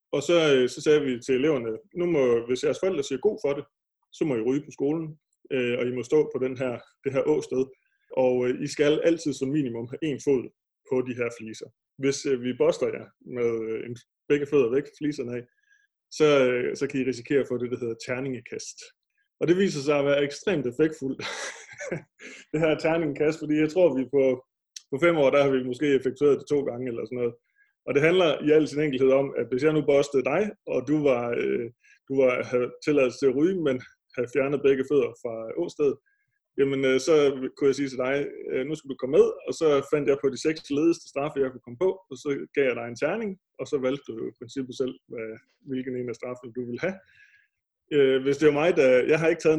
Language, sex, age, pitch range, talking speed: Danish, male, 20-39, 130-155 Hz, 225 wpm